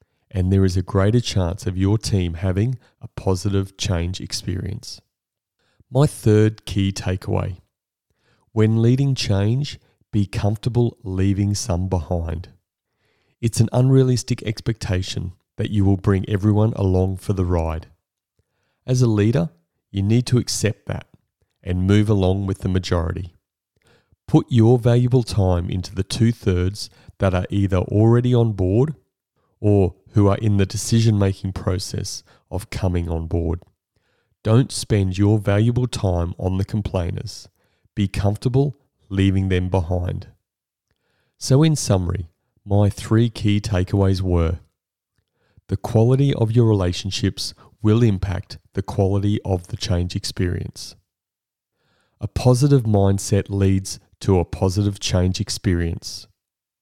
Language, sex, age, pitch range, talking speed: English, male, 30-49, 95-115 Hz, 125 wpm